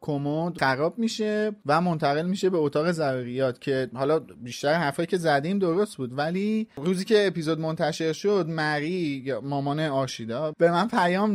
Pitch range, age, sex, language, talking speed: 140-175 Hz, 30-49, male, Persian, 160 wpm